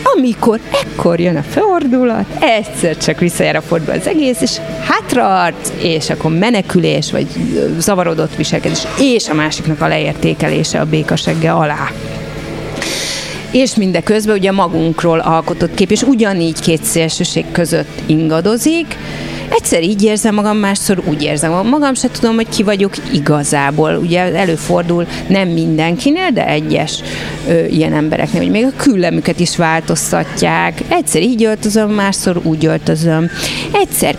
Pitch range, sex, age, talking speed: 160-220 Hz, female, 30-49, 135 wpm